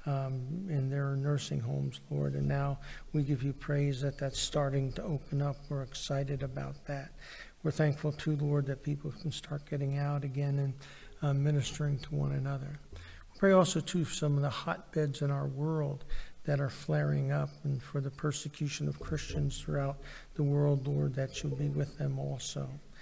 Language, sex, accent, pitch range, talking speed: English, male, American, 135-145 Hz, 180 wpm